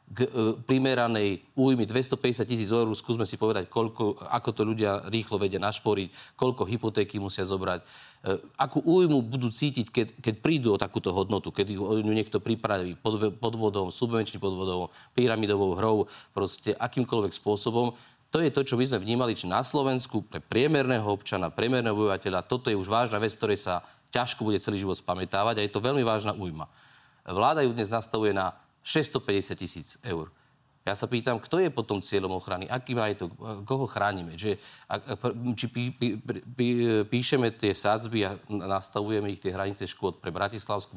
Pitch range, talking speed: 100-120 Hz, 175 wpm